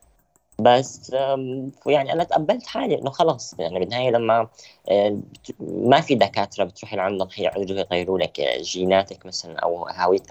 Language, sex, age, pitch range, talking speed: Arabic, female, 20-39, 95-120 Hz, 130 wpm